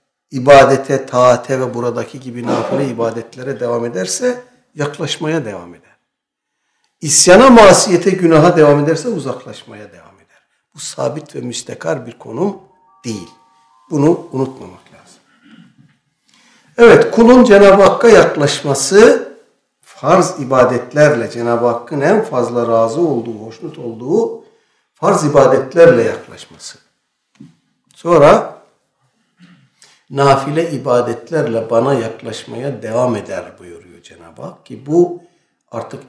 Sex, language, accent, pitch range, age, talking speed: male, Turkish, native, 125-185 Hz, 60-79, 100 wpm